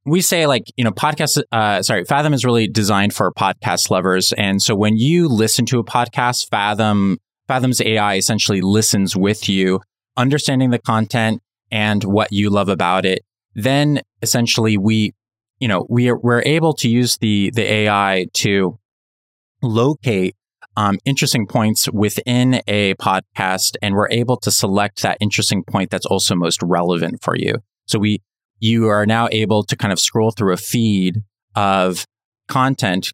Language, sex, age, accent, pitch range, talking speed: English, male, 20-39, American, 100-120 Hz, 160 wpm